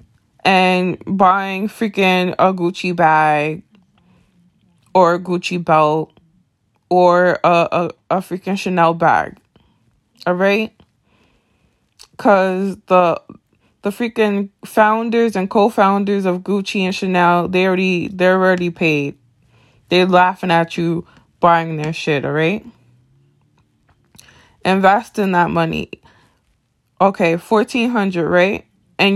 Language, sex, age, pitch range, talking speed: English, female, 20-39, 170-205 Hz, 105 wpm